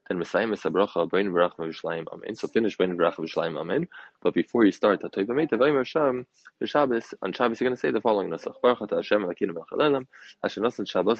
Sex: male